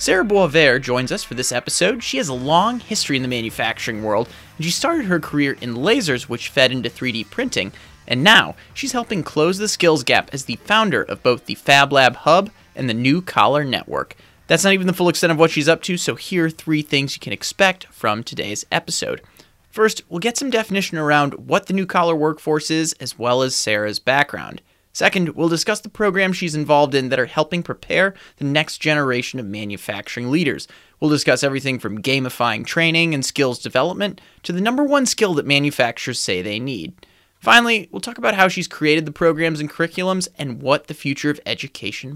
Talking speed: 205 wpm